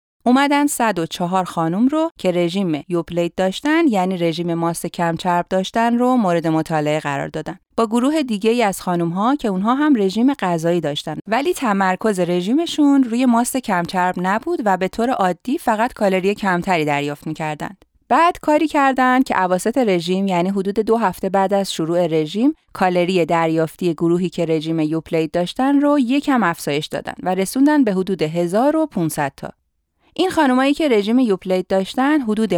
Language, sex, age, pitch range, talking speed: Persian, female, 30-49, 175-240 Hz, 165 wpm